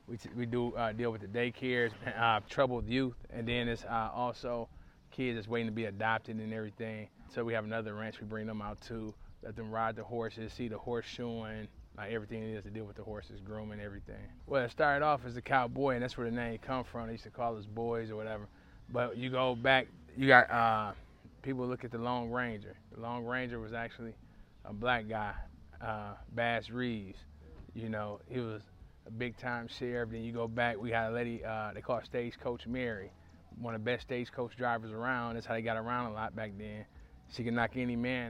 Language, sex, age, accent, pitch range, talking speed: English, male, 20-39, American, 110-120 Hz, 225 wpm